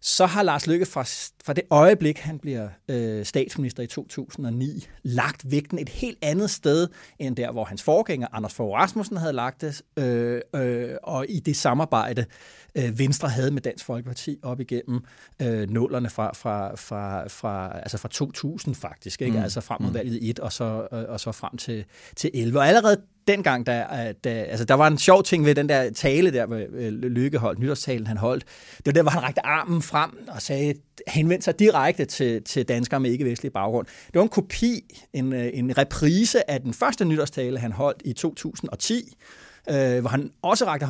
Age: 30-49